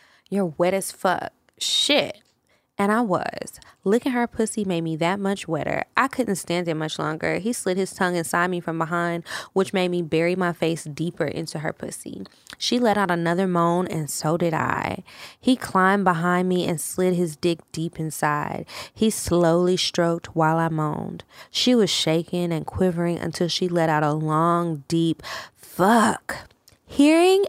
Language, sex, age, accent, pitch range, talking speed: English, female, 20-39, American, 165-200 Hz, 170 wpm